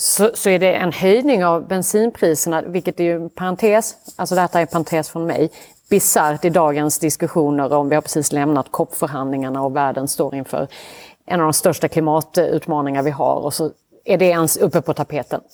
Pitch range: 160-220 Hz